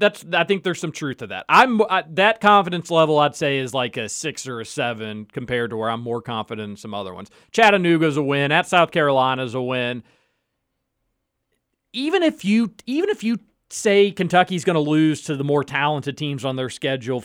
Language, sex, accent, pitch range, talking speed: English, male, American, 125-170 Hz, 200 wpm